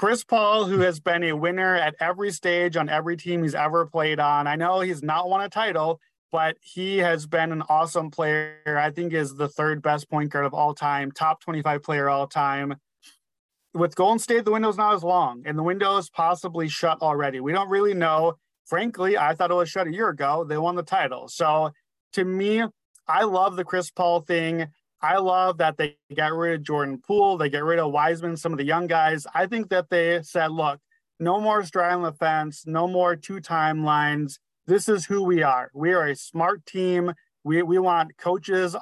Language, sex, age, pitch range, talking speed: English, male, 30-49, 155-185 Hz, 210 wpm